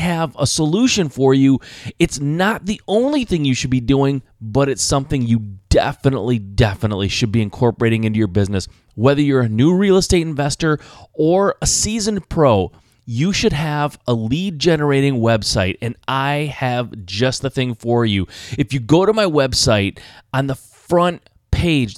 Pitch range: 115-150 Hz